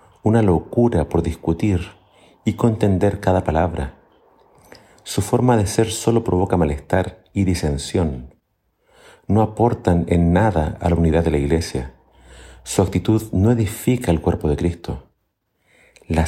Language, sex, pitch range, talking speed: Spanish, male, 80-105 Hz, 135 wpm